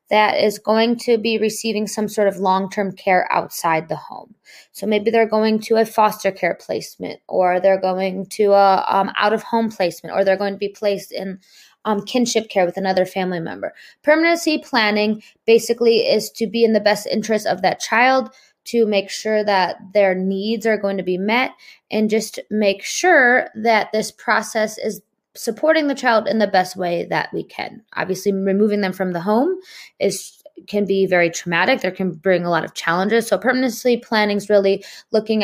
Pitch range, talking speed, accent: 195-230 Hz, 190 wpm, American